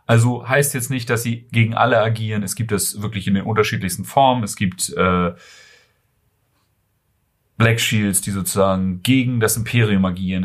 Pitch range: 95-120 Hz